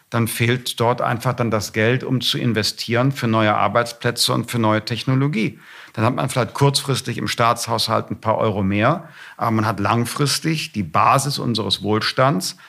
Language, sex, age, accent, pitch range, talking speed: German, male, 50-69, German, 105-125 Hz, 170 wpm